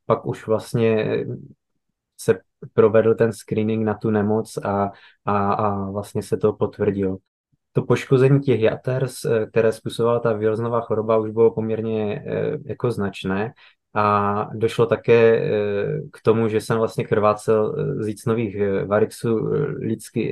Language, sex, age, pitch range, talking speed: Czech, male, 20-39, 105-115 Hz, 130 wpm